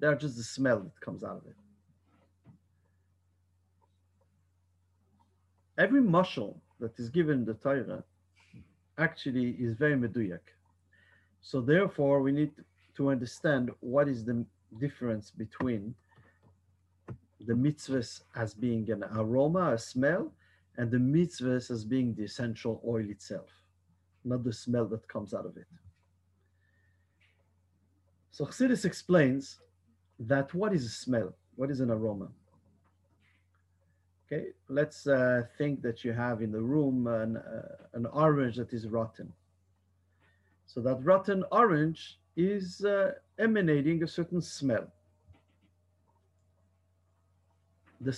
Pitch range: 90-140 Hz